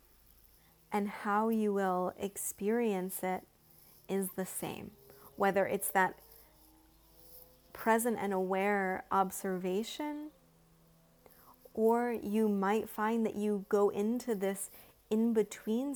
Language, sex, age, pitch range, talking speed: English, female, 30-49, 195-225 Hz, 100 wpm